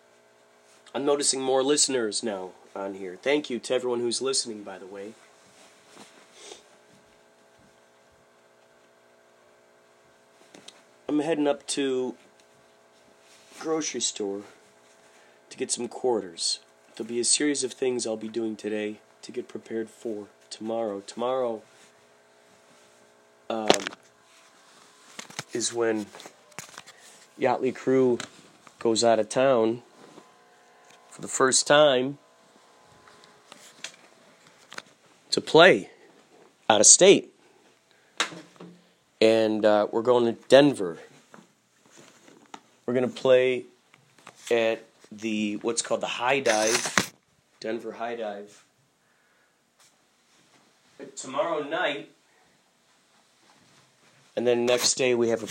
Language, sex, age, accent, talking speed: English, male, 30-49, American, 95 wpm